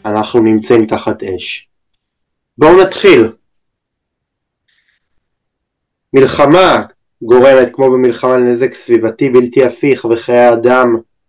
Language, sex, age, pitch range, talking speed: Hebrew, male, 20-39, 120-140 Hz, 85 wpm